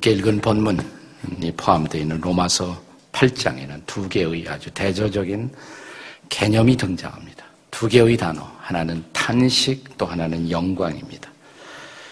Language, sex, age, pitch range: Korean, male, 50-69, 95-135 Hz